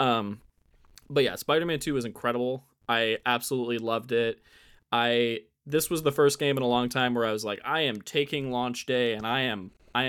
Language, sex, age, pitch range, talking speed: English, male, 20-39, 115-130 Hz, 200 wpm